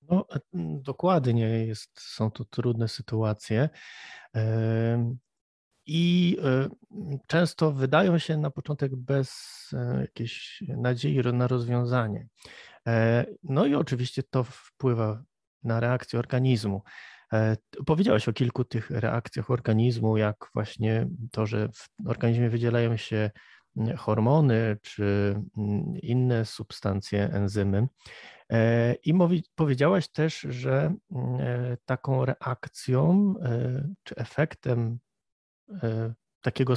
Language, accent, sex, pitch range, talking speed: Polish, native, male, 115-145 Hz, 90 wpm